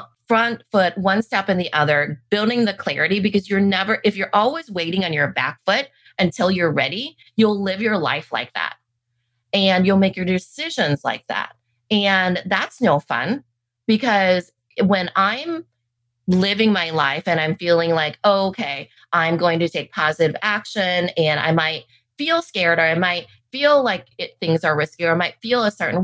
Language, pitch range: English, 160-205 Hz